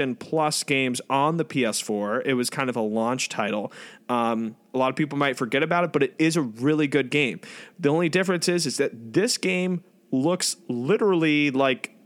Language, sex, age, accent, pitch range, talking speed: English, male, 20-39, American, 120-160 Hz, 195 wpm